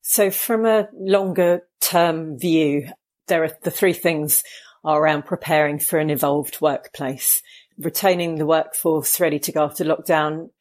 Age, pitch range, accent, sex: 40-59, 155-180 Hz, British, female